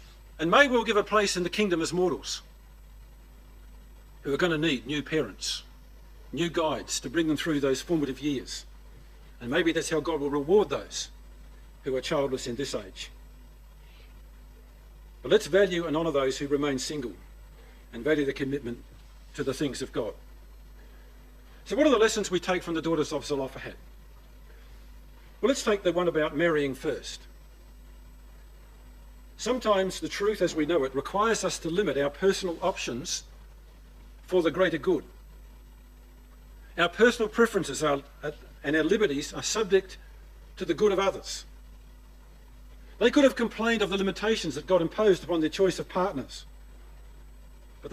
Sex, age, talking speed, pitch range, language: male, 50-69, 160 wpm, 135-190 Hz, English